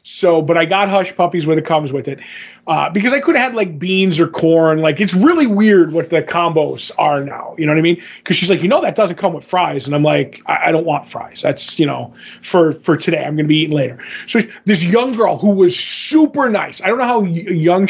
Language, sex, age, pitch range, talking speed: English, male, 20-39, 165-210 Hz, 260 wpm